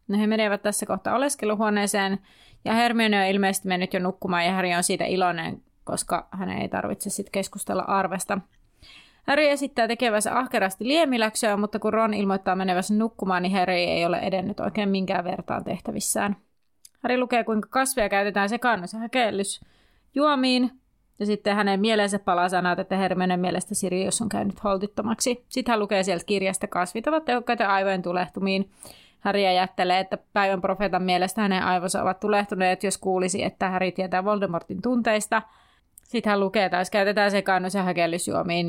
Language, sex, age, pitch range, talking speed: Finnish, female, 30-49, 190-230 Hz, 160 wpm